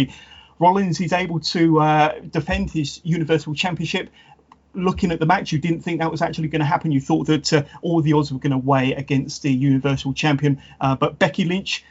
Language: English